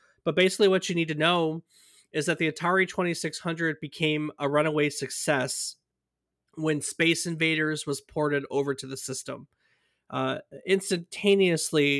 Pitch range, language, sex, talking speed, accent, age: 140-170 Hz, English, male, 135 wpm, American, 20-39